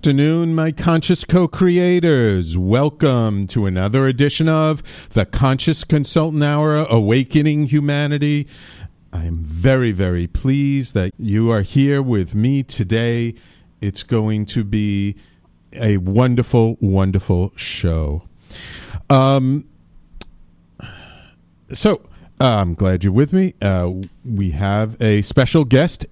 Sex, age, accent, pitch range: male, 40-59, American, 95-140 Hz